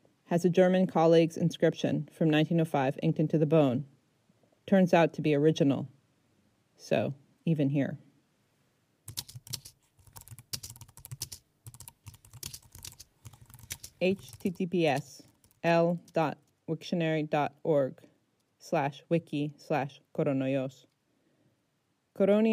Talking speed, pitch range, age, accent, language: 70 wpm, 140-175 Hz, 30-49, American, Greek